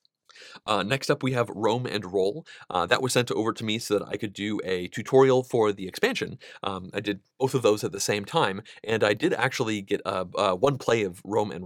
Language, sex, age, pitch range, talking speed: English, male, 30-49, 100-130 Hz, 240 wpm